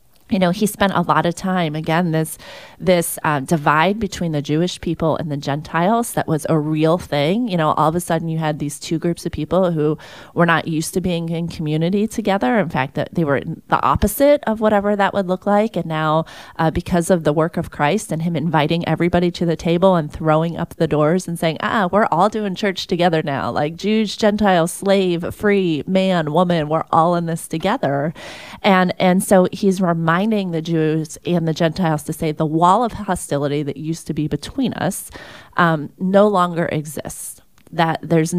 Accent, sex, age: American, female, 30-49